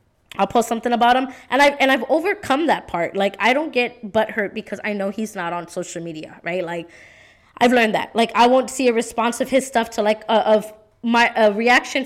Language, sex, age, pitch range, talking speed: English, female, 20-39, 185-225 Hz, 235 wpm